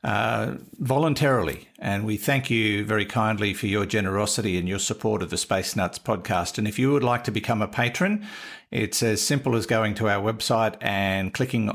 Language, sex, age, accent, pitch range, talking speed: English, male, 50-69, Australian, 95-125 Hz, 195 wpm